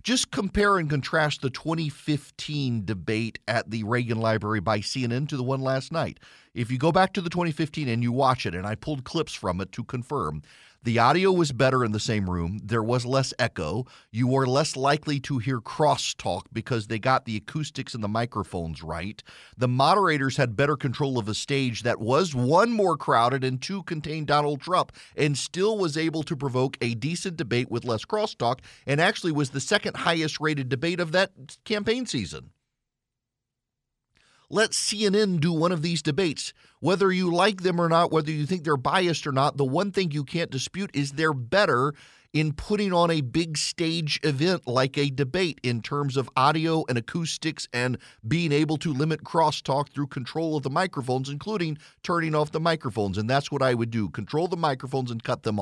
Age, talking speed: 40-59, 195 wpm